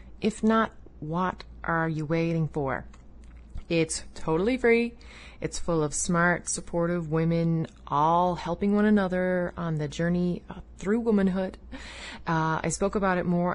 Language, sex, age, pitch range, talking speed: English, female, 30-49, 160-185 Hz, 140 wpm